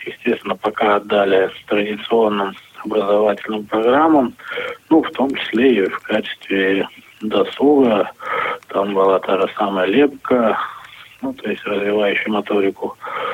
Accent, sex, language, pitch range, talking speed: native, male, Russian, 105-125 Hz, 110 wpm